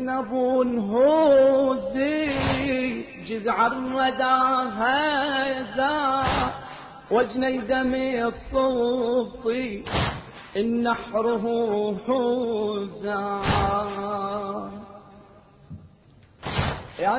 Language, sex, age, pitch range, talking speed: Arabic, male, 40-59, 235-265 Hz, 40 wpm